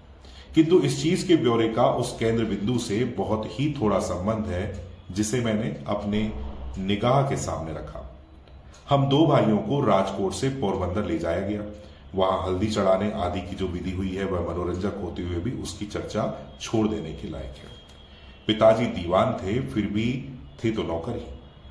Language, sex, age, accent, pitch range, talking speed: Hindi, male, 40-59, native, 85-110 Hz, 170 wpm